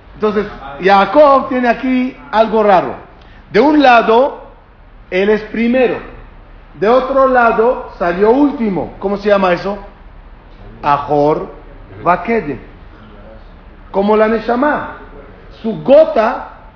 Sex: male